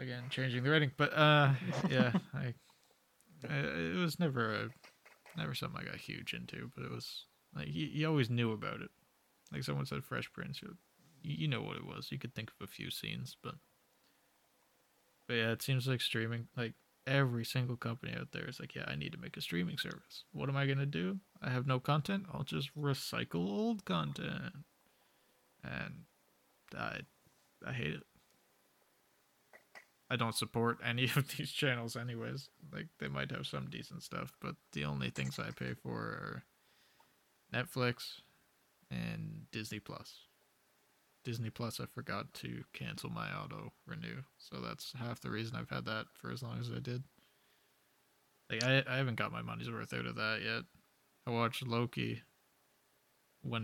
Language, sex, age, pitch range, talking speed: English, male, 20-39, 110-140 Hz, 175 wpm